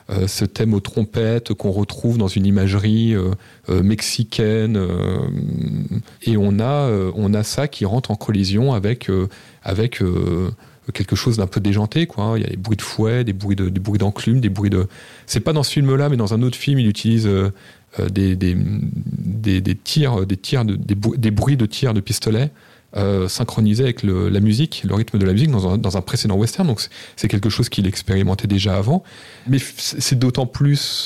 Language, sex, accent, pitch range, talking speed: French, male, French, 100-125 Hz, 215 wpm